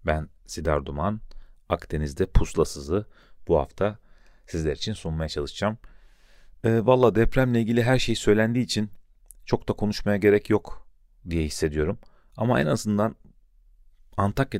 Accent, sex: native, male